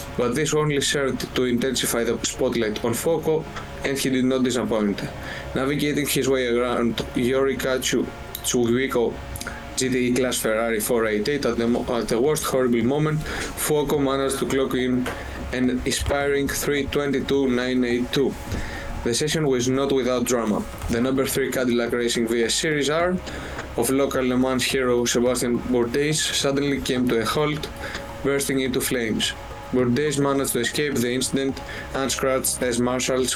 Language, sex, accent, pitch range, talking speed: Greek, male, Spanish, 120-135 Hz, 140 wpm